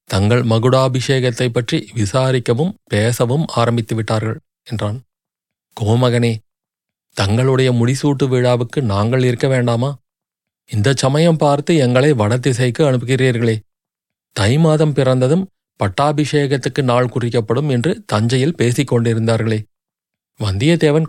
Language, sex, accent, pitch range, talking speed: Tamil, male, native, 115-135 Hz, 90 wpm